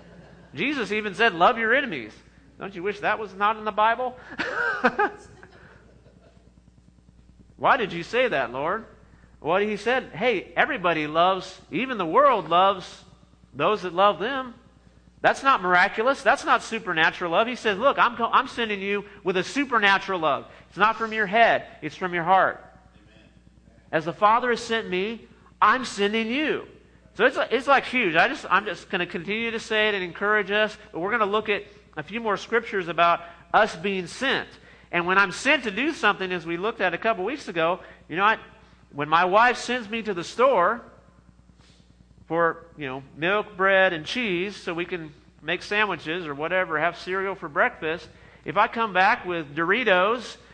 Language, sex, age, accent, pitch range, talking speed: English, male, 40-59, American, 170-220 Hz, 185 wpm